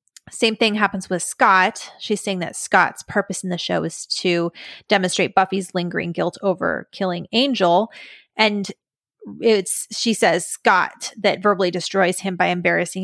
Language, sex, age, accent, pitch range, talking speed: English, female, 20-39, American, 180-210 Hz, 150 wpm